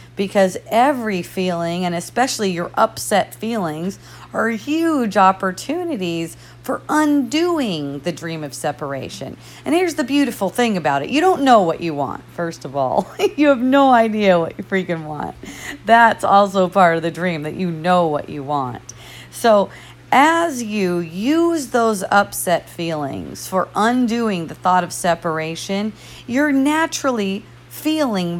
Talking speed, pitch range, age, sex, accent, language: 145 wpm, 165-230 Hz, 40-59, female, American, English